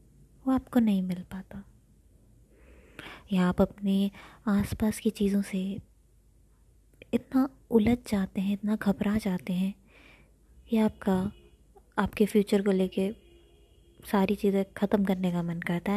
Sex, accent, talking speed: female, native, 125 wpm